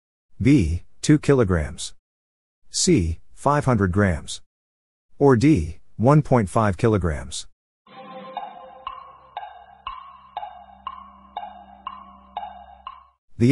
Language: English